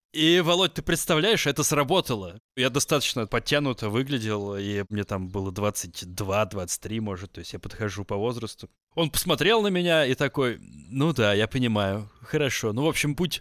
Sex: male